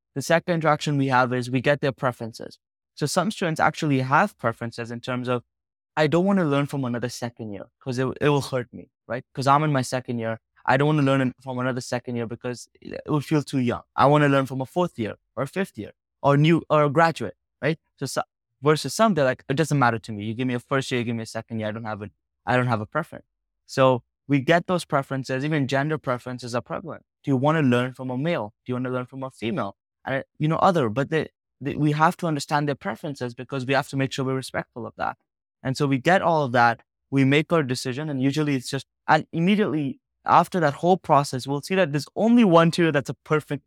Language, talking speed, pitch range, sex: English, 255 wpm, 125-150 Hz, male